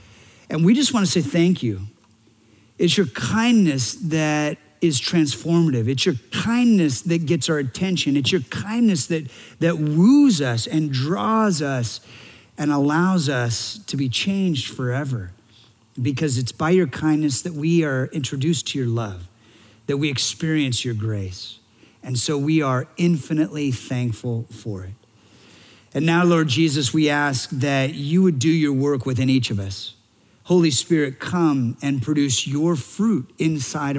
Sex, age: male, 50-69